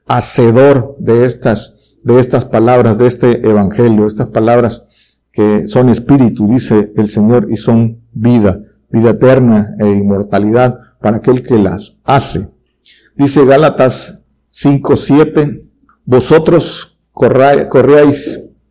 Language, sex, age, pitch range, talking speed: Spanish, male, 50-69, 110-135 Hz, 110 wpm